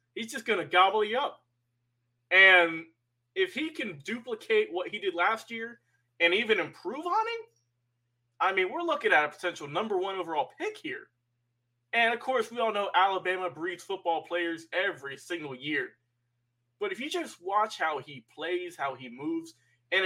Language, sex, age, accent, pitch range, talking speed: English, male, 20-39, American, 145-215 Hz, 175 wpm